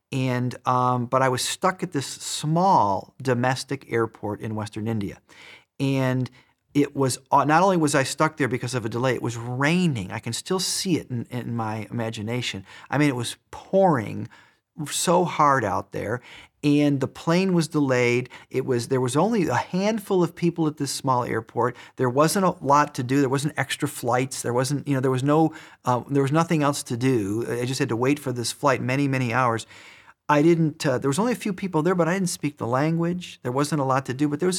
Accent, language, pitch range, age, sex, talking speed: American, English, 125-170 Hz, 40-59, male, 220 wpm